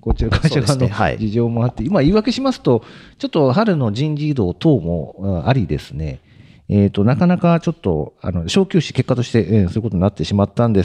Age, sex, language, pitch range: 40-59, male, Japanese, 95-135 Hz